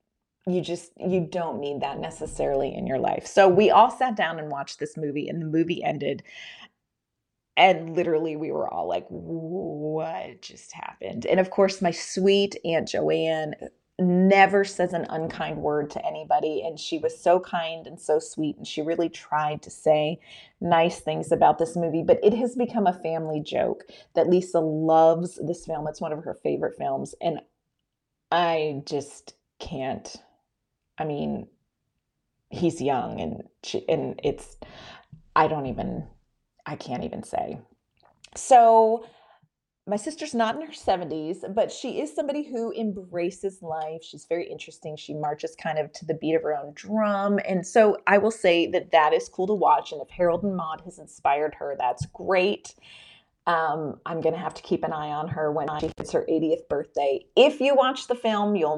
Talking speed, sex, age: 175 wpm, female, 30-49